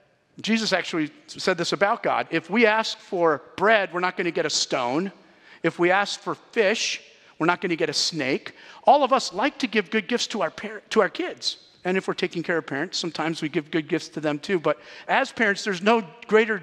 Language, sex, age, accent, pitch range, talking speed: English, male, 50-69, American, 165-215 Hz, 235 wpm